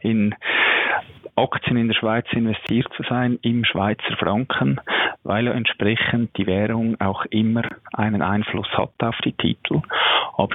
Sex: male